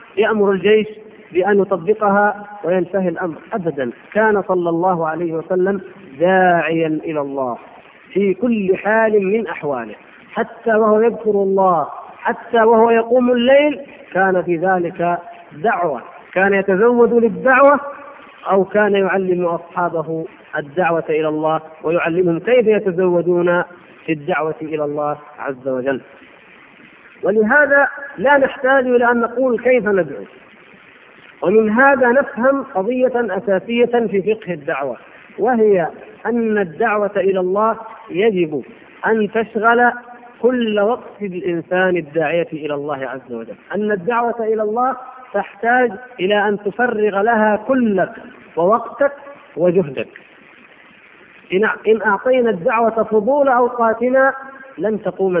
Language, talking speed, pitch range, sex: Arabic, 110 wpm, 180-235 Hz, male